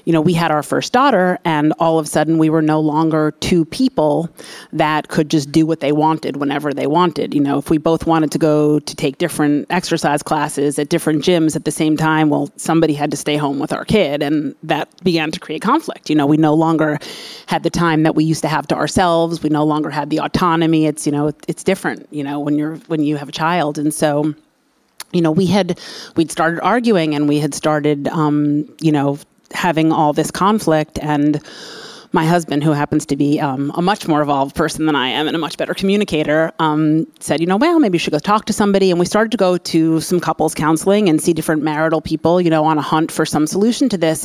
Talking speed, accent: 235 wpm, American